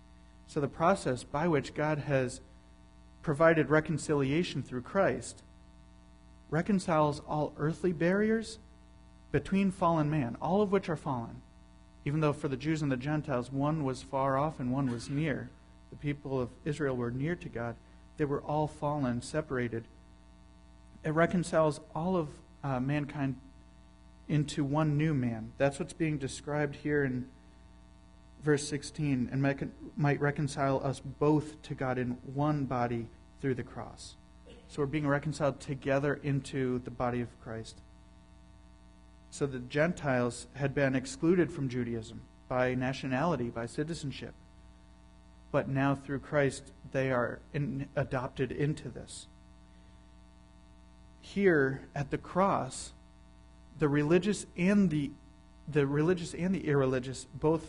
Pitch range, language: 110-150 Hz, English